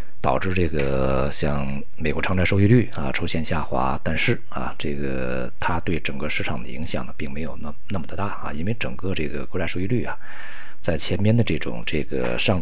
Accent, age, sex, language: native, 50-69, male, Chinese